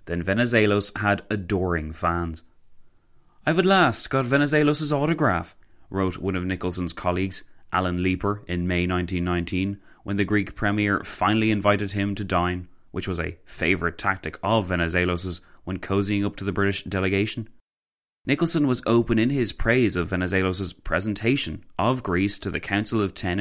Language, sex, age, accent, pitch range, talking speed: English, male, 30-49, Irish, 90-115 Hz, 155 wpm